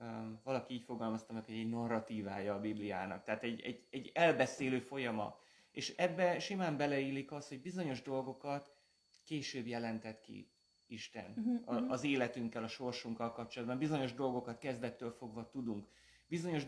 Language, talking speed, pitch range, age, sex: Hungarian, 135 wpm, 115-130 Hz, 30-49, male